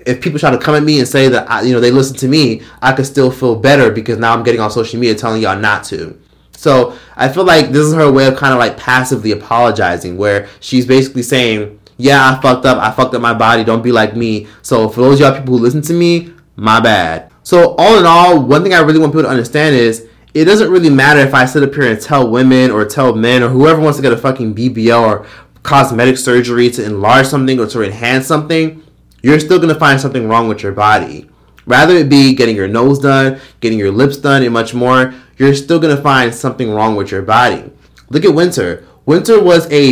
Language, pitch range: English, 115-150 Hz